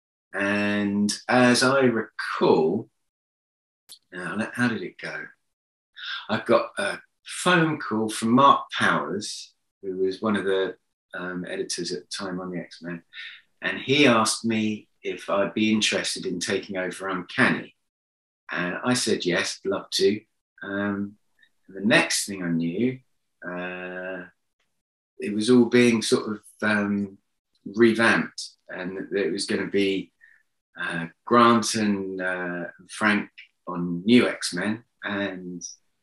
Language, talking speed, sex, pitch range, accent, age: English, 130 wpm, male, 90-110 Hz, British, 30-49